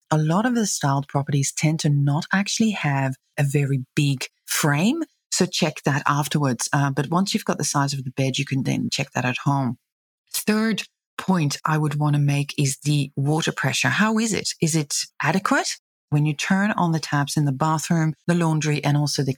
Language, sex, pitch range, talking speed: English, female, 140-180 Hz, 210 wpm